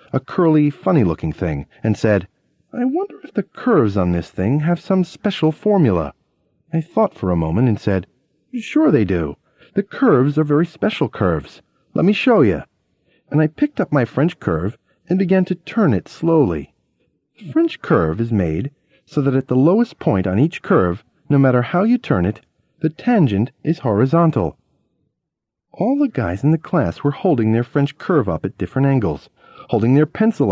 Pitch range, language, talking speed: 110-180 Hz, English, 185 wpm